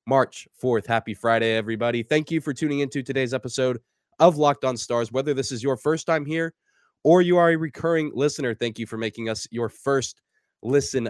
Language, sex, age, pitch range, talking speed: English, male, 20-39, 115-145 Hz, 200 wpm